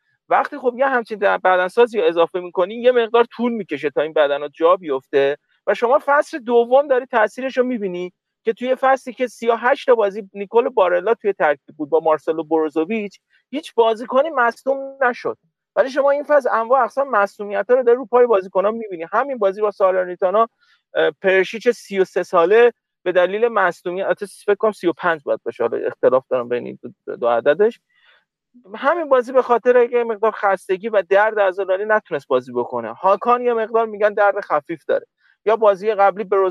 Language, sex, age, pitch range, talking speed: Persian, male, 40-59, 190-250 Hz, 160 wpm